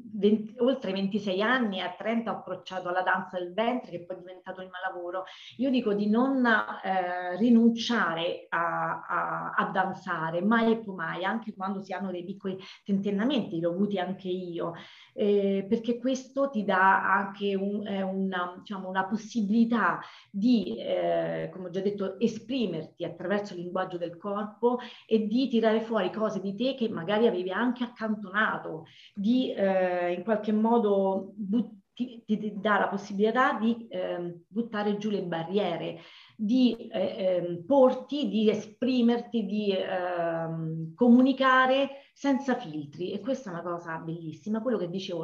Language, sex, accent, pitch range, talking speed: Italian, female, native, 185-230 Hz, 155 wpm